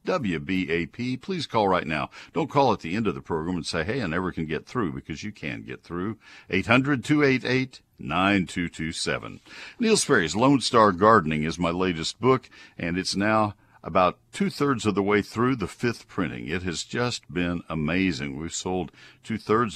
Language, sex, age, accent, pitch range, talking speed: English, male, 60-79, American, 90-125 Hz, 165 wpm